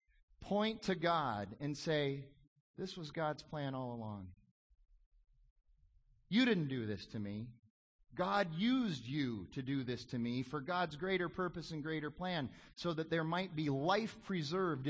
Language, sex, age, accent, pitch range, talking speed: English, male, 30-49, American, 105-145 Hz, 155 wpm